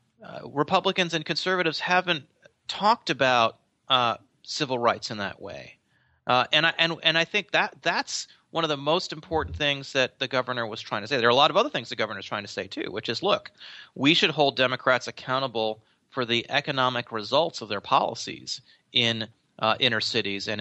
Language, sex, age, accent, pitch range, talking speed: English, male, 30-49, American, 110-155 Hz, 200 wpm